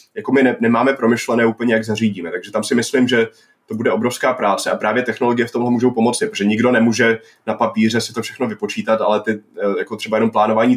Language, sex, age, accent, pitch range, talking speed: Czech, male, 20-39, native, 110-120 Hz, 210 wpm